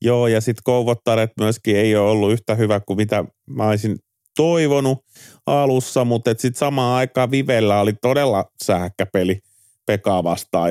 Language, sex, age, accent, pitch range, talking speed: Finnish, male, 30-49, native, 95-120 Hz, 145 wpm